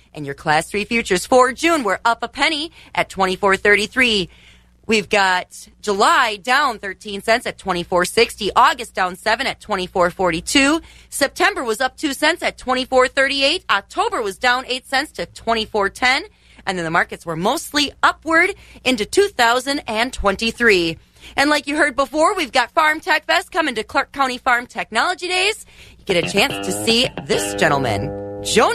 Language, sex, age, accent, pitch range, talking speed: English, female, 30-49, American, 210-305 Hz, 155 wpm